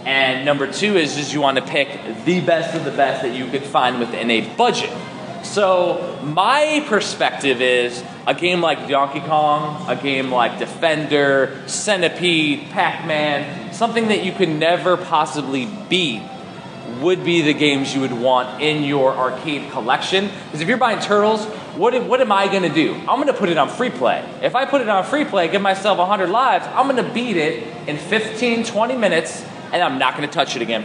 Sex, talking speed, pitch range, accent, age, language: male, 195 wpm, 140-195 Hz, American, 20-39, English